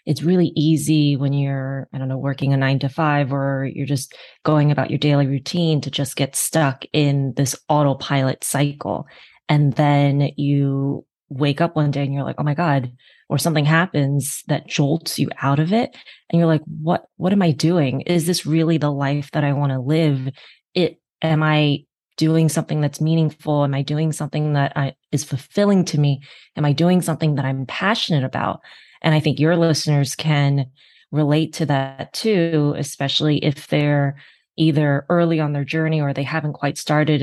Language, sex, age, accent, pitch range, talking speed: English, female, 20-39, American, 140-160 Hz, 185 wpm